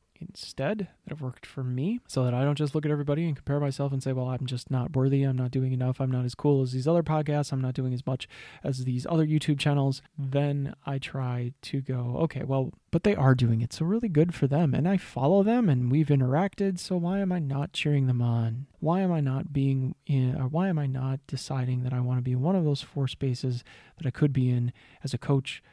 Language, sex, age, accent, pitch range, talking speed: English, male, 20-39, American, 130-150 Hz, 255 wpm